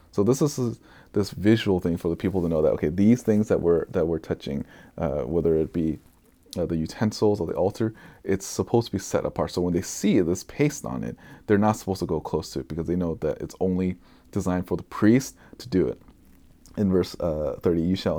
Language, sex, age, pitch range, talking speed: English, male, 20-39, 80-100 Hz, 240 wpm